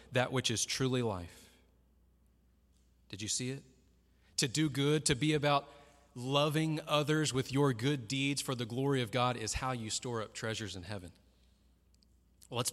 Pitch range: 90-135 Hz